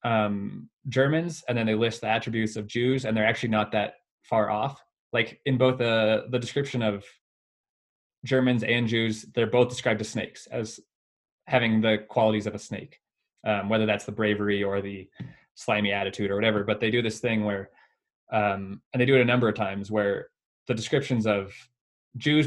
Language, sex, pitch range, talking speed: English, male, 105-120 Hz, 185 wpm